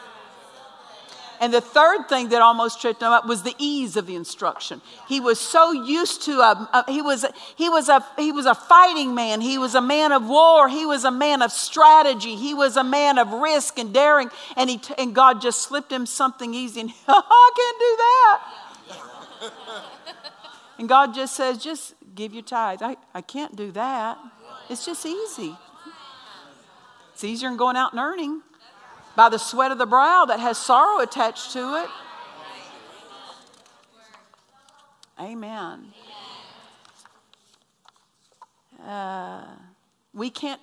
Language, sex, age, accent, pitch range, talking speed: English, female, 50-69, American, 205-285 Hz, 160 wpm